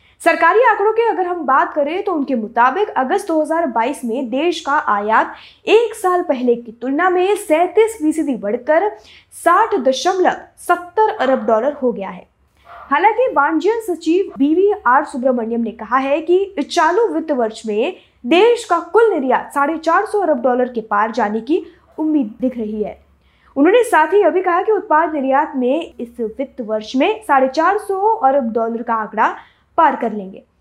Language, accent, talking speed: Hindi, native, 140 wpm